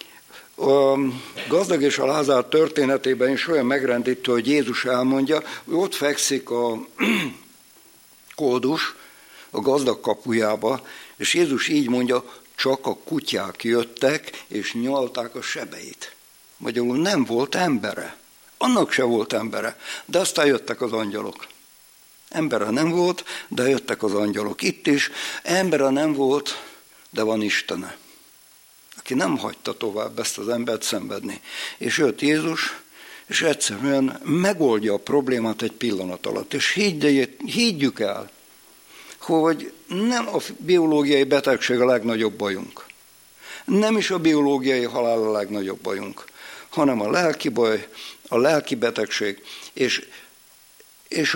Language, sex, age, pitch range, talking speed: Hungarian, male, 60-79, 120-155 Hz, 125 wpm